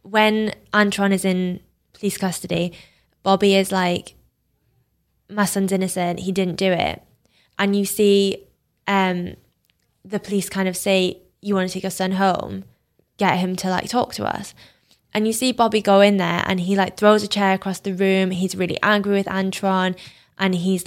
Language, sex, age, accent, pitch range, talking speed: English, female, 20-39, British, 185-205 Hz, 180 wpm